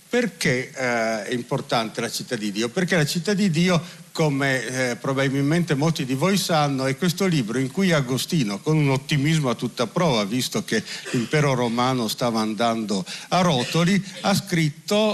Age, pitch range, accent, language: 50-69, 135-180 Hz, native, Italian